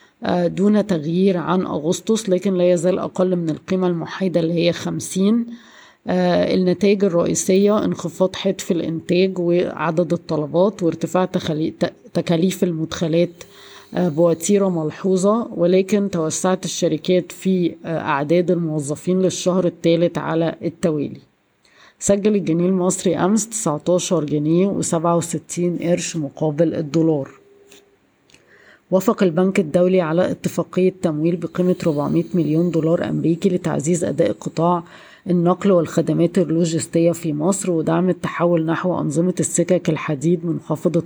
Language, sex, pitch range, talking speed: Arabic, female, 160-185 Hz, 105 wpm